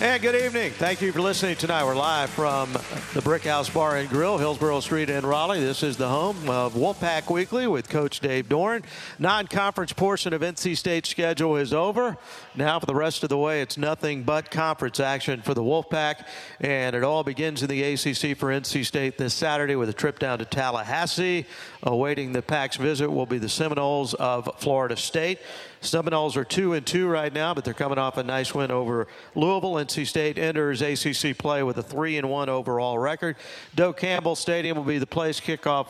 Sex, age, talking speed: male, 50-69, 200 wpm